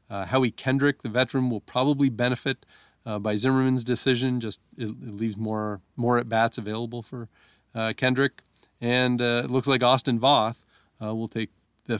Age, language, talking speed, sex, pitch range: 40-59, English, 175 wpm, male, 105-130 Hz